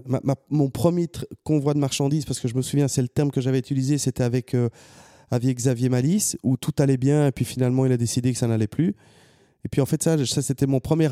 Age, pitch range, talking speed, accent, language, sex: 30-49, 125-150 Hz, 250 wpm, French, French, male